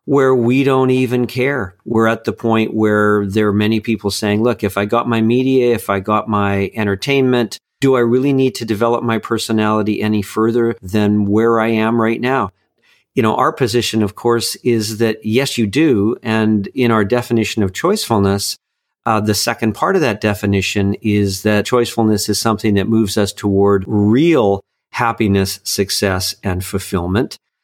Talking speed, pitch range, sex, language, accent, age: 175 wpm, 100-120 Hz, male, English, American, 50-69